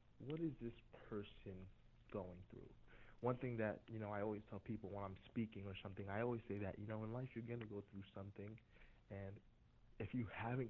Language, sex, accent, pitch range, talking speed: English, male, American, 100-120 Hz, 215 wpm